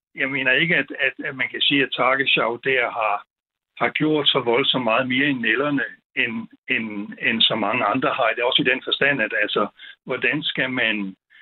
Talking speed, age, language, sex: 205 wpm, 60-79, Danish, male